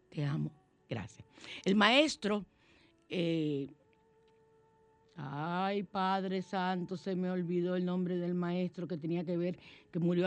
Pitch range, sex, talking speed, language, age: 155-205 Hz, female, 130 wpm, Spanish, 50-69